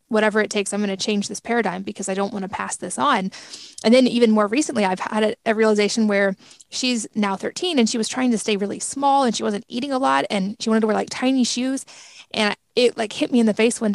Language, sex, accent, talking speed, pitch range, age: English, female, American, 265 wpm, 205-240 Hz, 20-39